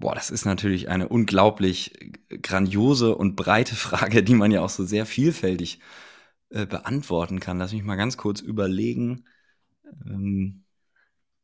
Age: 30-49